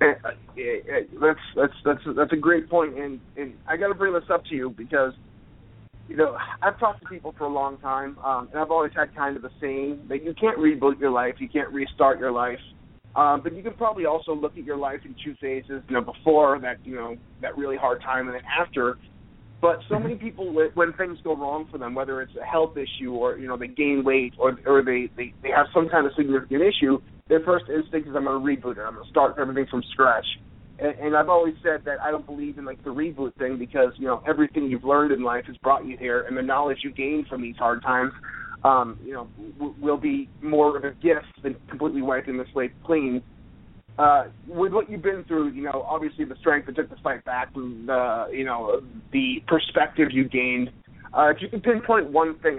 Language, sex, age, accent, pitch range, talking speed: English, male, 30-49, American, 130-160 Hz, 235 wpm